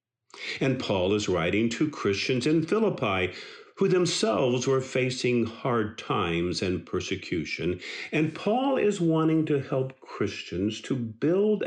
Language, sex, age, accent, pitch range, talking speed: English, male, 50-69, American, 105-165 Hz, 130 wpm